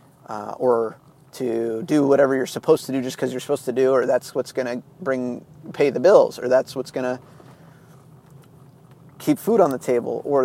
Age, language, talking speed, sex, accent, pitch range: 30-49, English, 200 wpm, male, American, 135-160 Hz